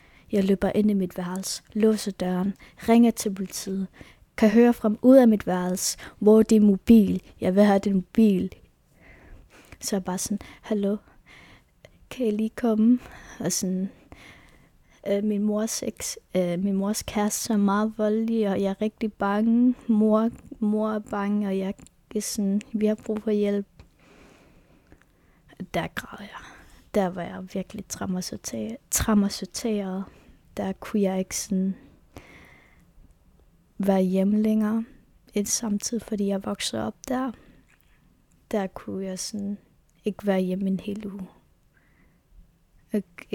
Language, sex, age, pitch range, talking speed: Danish, female, 20-39, 185-215 Hz, 135 wpm